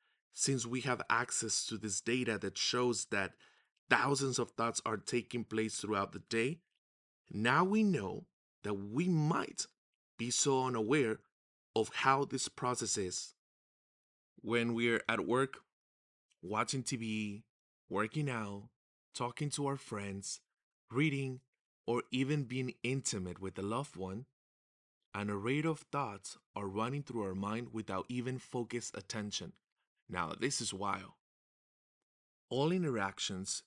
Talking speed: 135 wpm